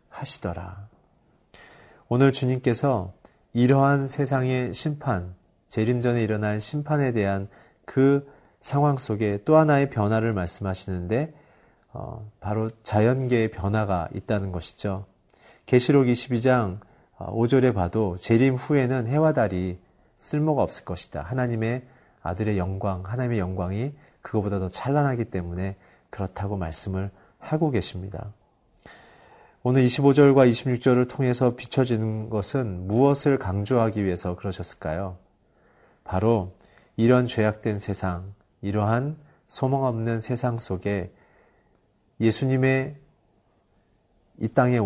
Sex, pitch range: male, 100-130 Hz